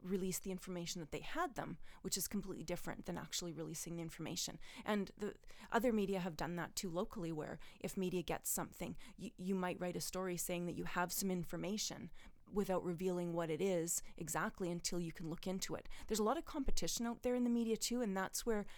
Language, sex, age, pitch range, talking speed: English, female, 30-49, 175-200 Hz, 215 wpm